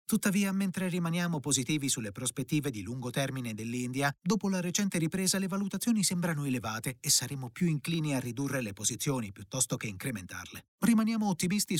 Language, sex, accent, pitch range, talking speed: Italian, male, native, 120-170 Hz, 160 wpm